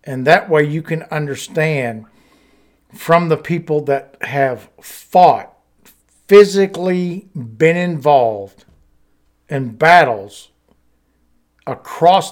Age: 60-79